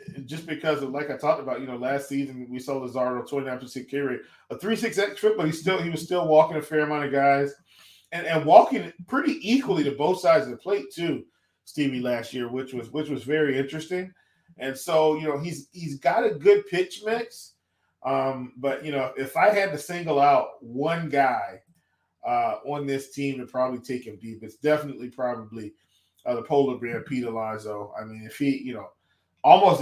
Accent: American